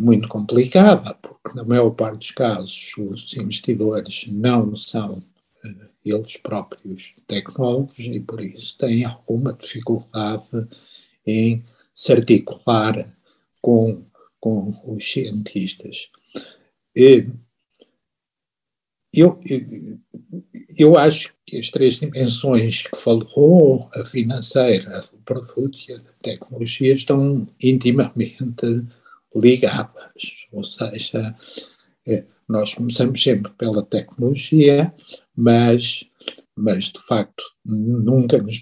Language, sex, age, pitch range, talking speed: English, male, 60-79, 110-130 Hz, 100 wpm